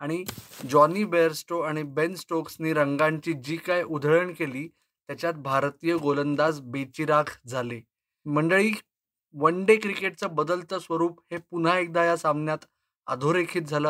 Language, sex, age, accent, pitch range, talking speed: Marathi, male, 20-39, native, 150-175 Hz, 95 wpm